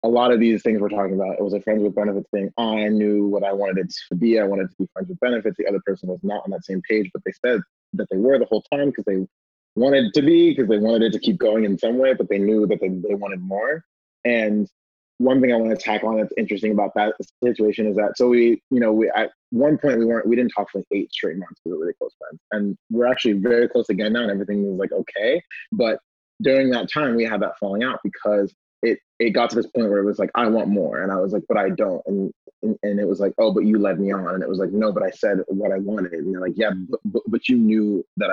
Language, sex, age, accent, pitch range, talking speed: English, male, 20-39, American, 100-115 Hz, 290 wpm